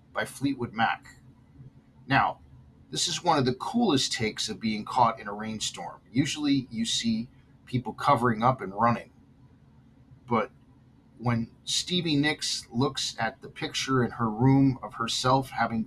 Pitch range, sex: 115-140 Hz, male